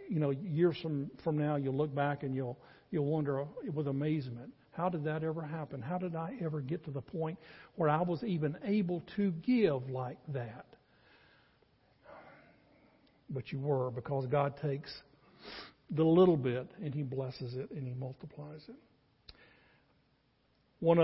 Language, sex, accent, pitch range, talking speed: English, male, American, 140-180 Hz, 160 wpm